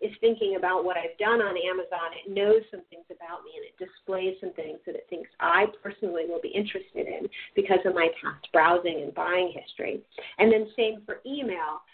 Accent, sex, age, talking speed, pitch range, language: American, female, 40-59, 205 wpm, 180-245 Hz, English